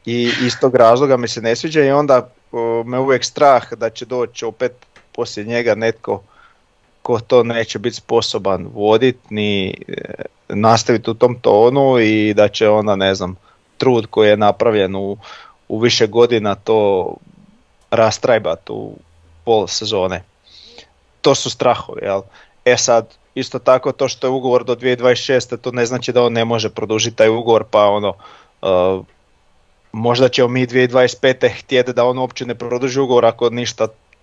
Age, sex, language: 20-39, male, Croatian